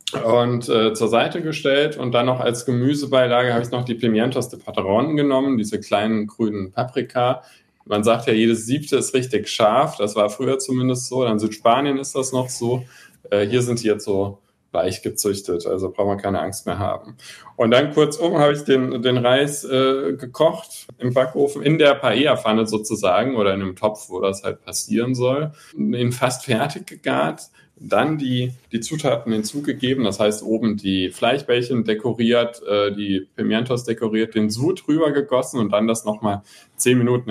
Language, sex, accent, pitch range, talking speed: German, male, German, 105-130 Hz, 180 wpm